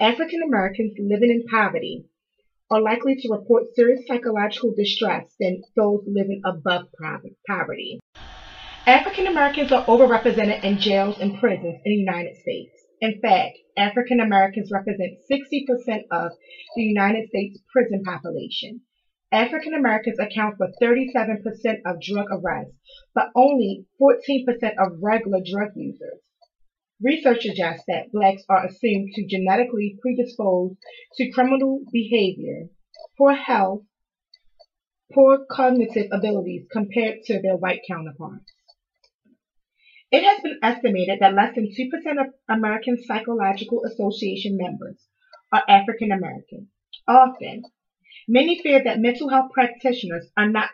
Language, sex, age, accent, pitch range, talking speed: English, female, 30-49, American, 200-255 Hz, 120 wpm